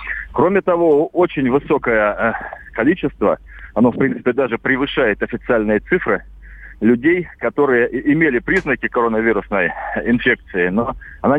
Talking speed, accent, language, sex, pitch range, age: 105 wpm, native, Russian, male, 110-130 Hz, 40-59